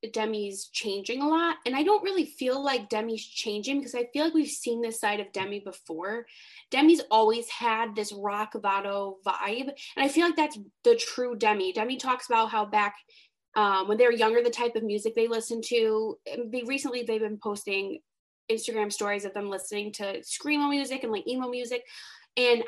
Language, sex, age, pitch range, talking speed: English, female, 20-39, 210-270 Hz, 190 wpm